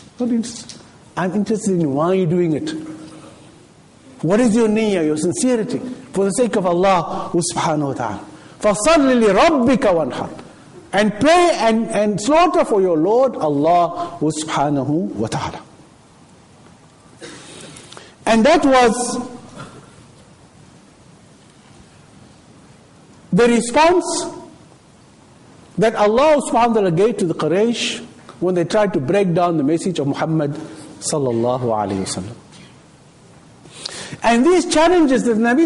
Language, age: English, 50-69